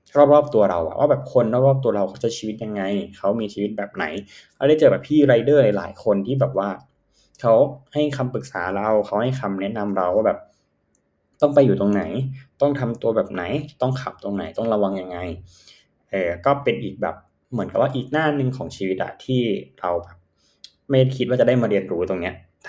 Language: Thai